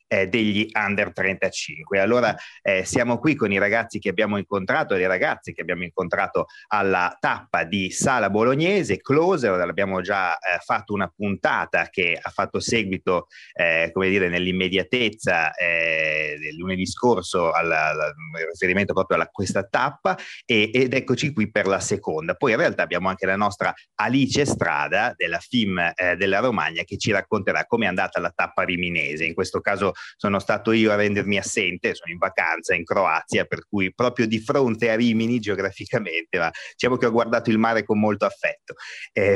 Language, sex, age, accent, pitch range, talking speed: Italian, male, 30-49, native, 95-115 Hz, 170 wpm